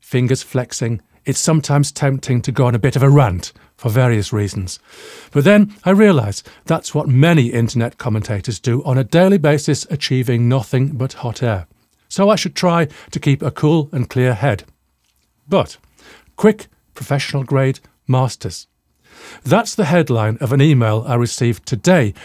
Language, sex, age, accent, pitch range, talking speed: English, male, 50-69, British, 115-150 Hz, 160 wpm